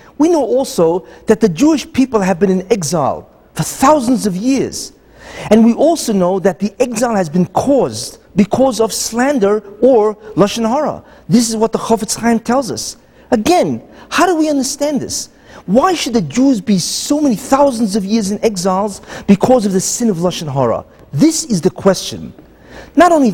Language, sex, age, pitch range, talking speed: English, male, 50-69, 200-270 Hz, 180 wpm